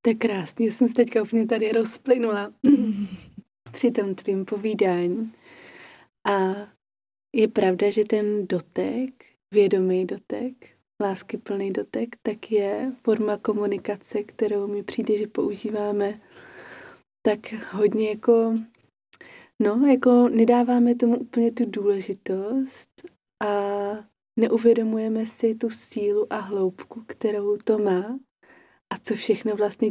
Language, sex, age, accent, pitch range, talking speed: Czech, female, 20-39, native, 190-220 Hz, 110 wpm